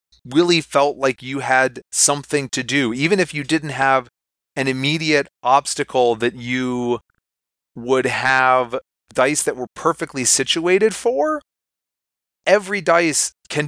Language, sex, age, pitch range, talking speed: English, male, 30-49, 120-145 Hz, 125 wpm